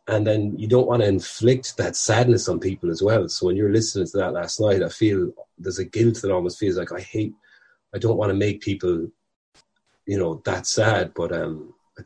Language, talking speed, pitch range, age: English, 225 wpm, 90-100 Hz, 30-49